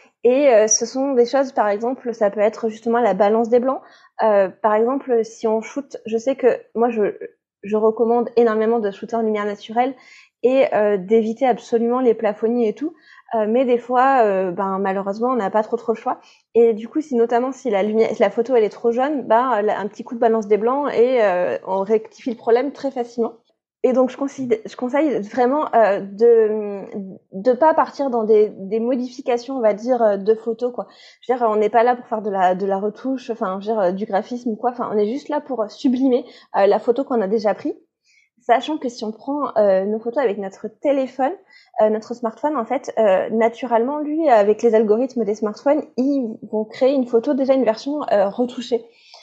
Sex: female